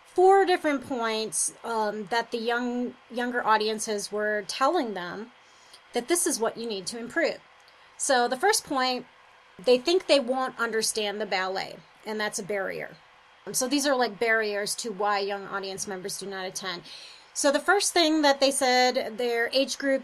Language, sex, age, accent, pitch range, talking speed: English, female, 30-49, American, 215-270 Hz, 175 wpm